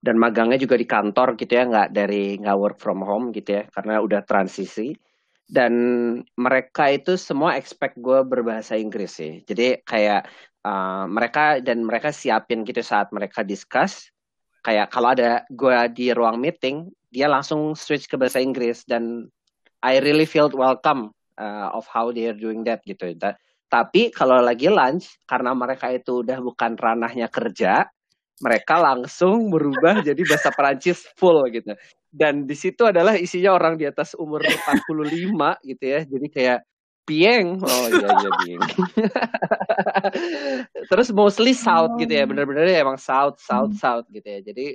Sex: male